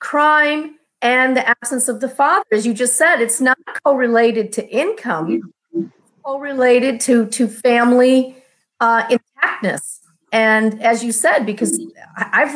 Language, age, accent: English, 40-59, American